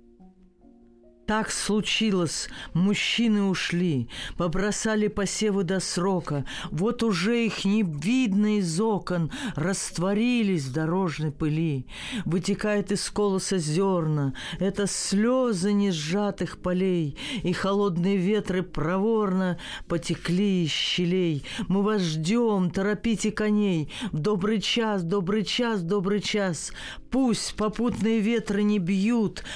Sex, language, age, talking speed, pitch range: female, Russian, 40-59, 105 wpm, 165-210 Hz